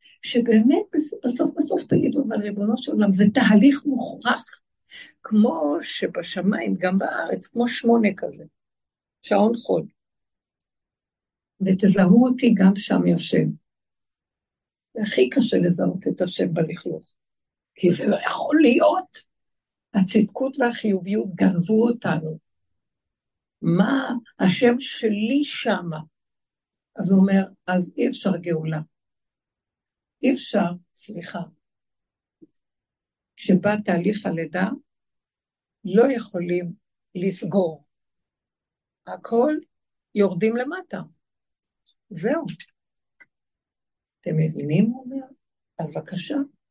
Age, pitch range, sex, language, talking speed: 60-79, 180-250 Hz, female, Hebrew, 90 wpm